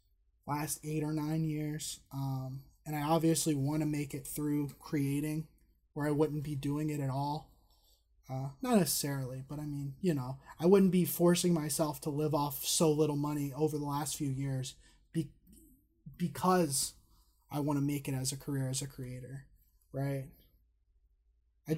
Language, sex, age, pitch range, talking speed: English, male, 20-39, 135-155 Hz, 170 wpm